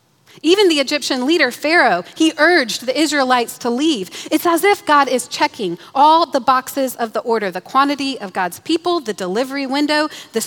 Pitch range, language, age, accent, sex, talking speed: 195-285 Hz, English, 30-49, American, female, 185 wpm